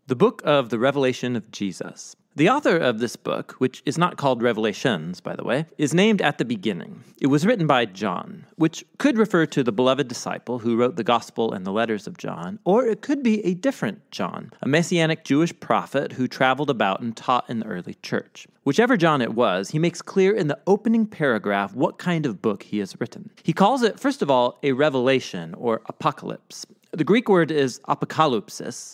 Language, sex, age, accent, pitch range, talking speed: English, male, 40-59, American, 130-195 Hz, 205 wpm